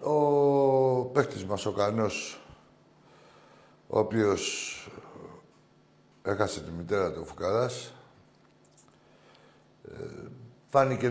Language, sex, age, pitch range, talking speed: Greek, male, 60-79, 95-120 Hz, 70 wpm